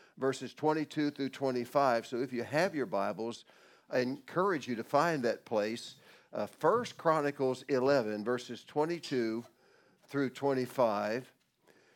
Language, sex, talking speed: English, male, 125 wpm